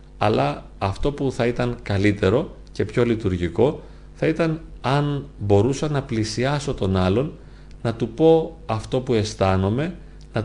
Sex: male